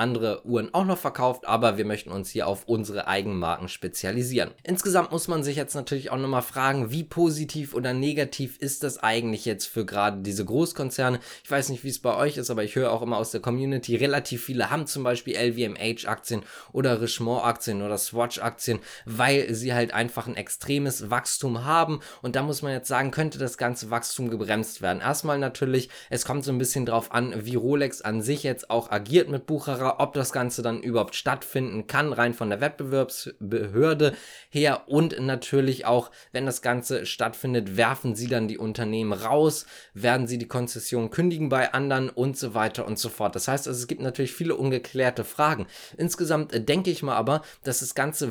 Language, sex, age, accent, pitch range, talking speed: German, male, 20-39, German, 115-145 Hz, 195 wpm